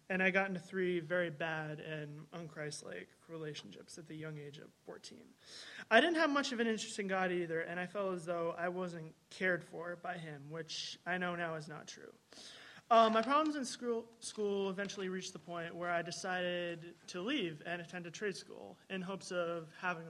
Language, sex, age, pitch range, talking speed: English, male, 20-39, 165-195 Hz, 205 wpm